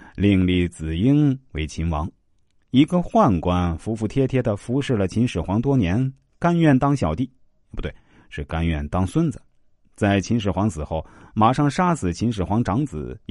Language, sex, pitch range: Chinese, male, 90-125 Hz